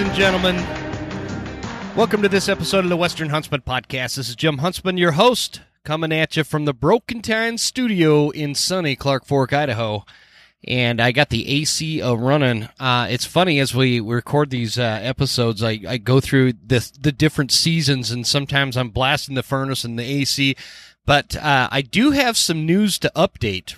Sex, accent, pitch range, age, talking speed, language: male, American, 115-150 Hz, 30-49, 185 wpm, English